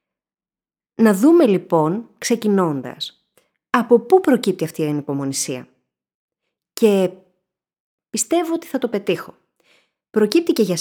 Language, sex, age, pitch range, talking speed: Greek, female, 30-49, 160-240 Hz, 105 wpm